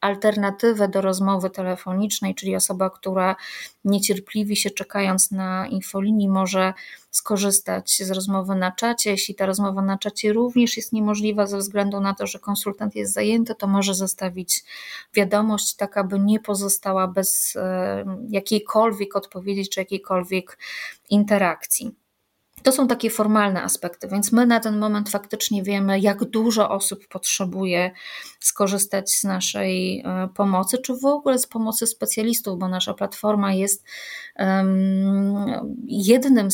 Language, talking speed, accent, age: Polish, 130 wpm, native, 20-39